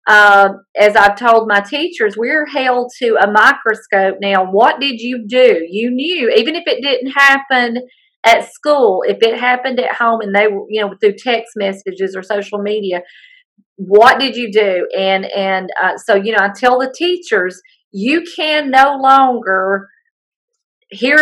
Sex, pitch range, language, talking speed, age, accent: female, 195-265 Hz, English, 165 wpm, 40-59, American